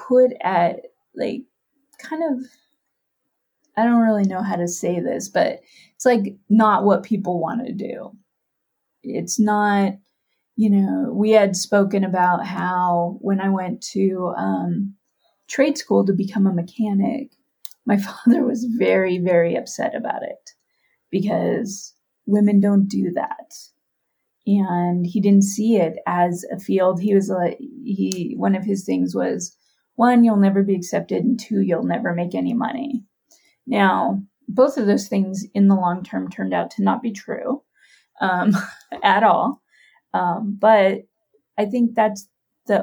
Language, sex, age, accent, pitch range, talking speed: English, female, 20-39, American, 195-240 Hz, 150 wpm